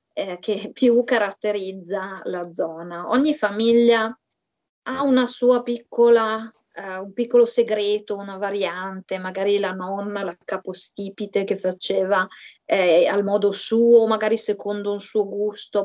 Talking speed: 130 wpm